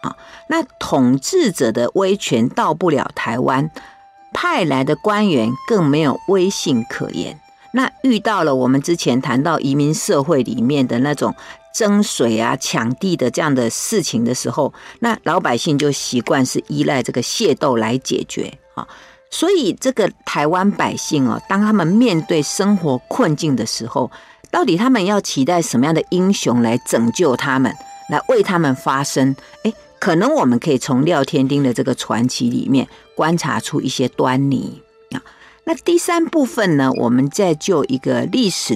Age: 50-69